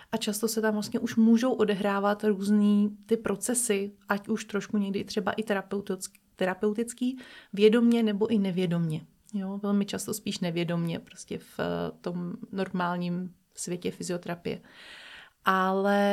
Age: 30-49